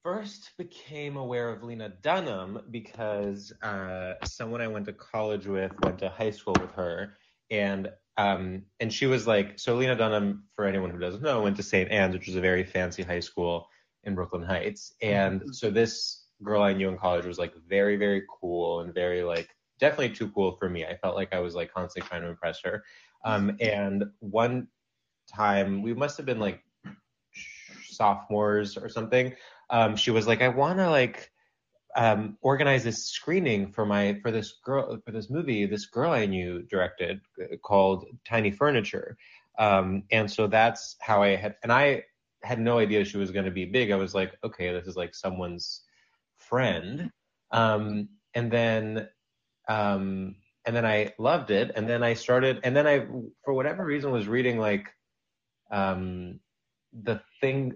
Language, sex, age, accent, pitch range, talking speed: English, male, 20-39, American, 95-120 Hz, 180 wpm